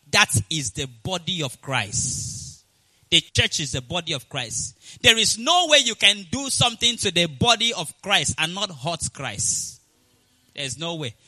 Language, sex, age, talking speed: English, male, 30-49, 180 wpm